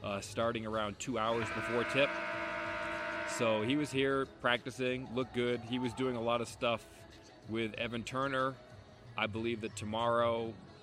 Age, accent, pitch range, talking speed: 30-49, American, 105-115 Hz, 155 wpm